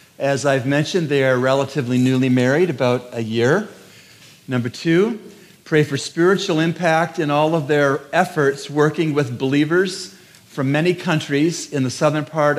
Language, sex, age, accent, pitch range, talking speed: English, male, 50-69, American, 125-150 Hz, 155 wpm